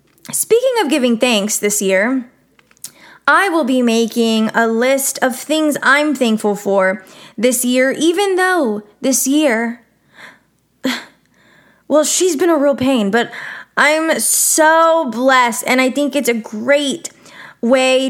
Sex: female